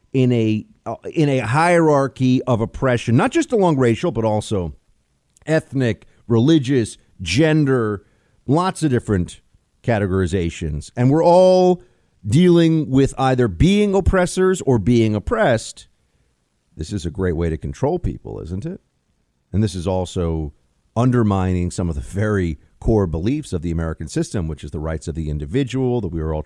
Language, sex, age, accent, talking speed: English, male, 50-69, American, 150 wpm